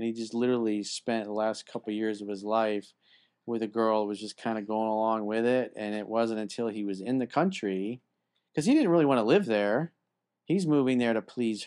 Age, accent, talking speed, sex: 40-59, American, 240 wpm, male